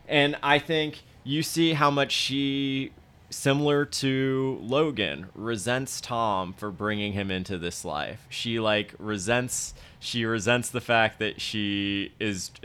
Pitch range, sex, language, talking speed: 110-130 Hz, male, English, 140 wpm